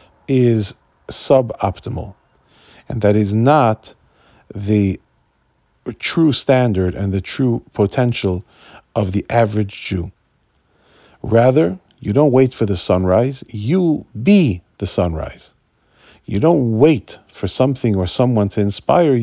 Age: 40-59